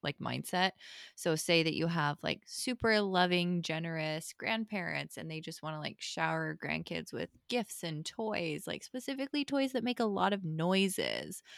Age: 20-39